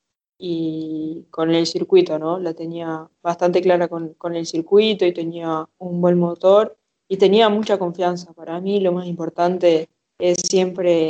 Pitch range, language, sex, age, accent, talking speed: 170-190 Hz, Spanish, female, 20-39, Argentinian, 155 wpm